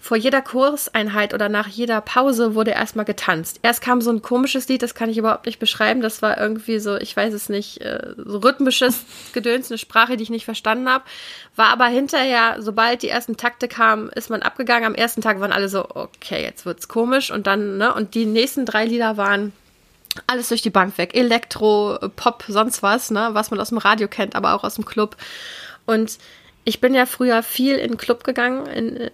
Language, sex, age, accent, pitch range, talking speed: German, female, 20-39, German, 205-235 Hz, 210 wpm